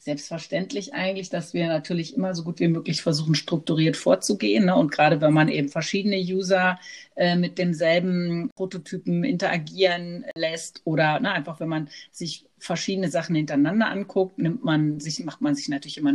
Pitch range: 175-225 Hz